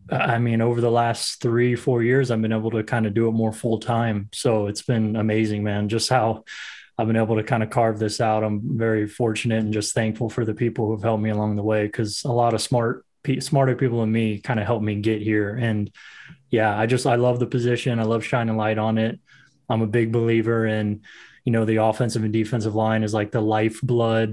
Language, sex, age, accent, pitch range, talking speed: English, male, 20-39, American, 110-120 Hz, 235 wpm